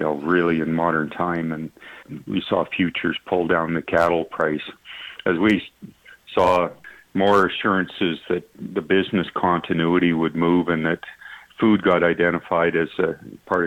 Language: English